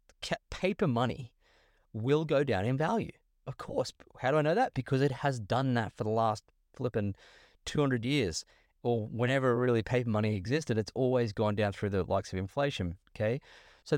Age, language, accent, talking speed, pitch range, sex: 30-49, English, Australian, 180 wpm, 105-155 Hz, male